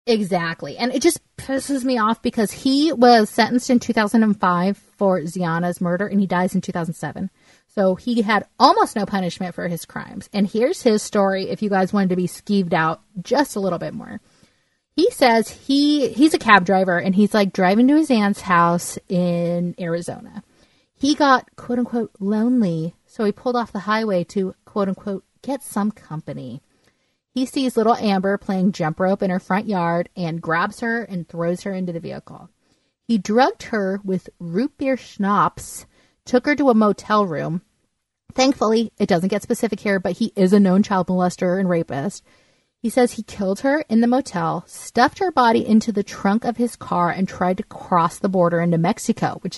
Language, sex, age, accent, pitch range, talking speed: English, female, 30-49, American, 185-235 Hz, 185 wpm